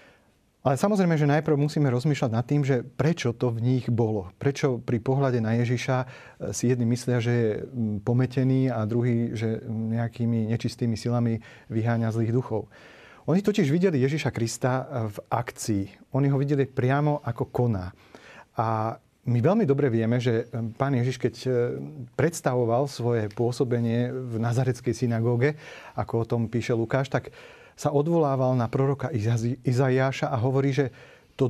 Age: 40-59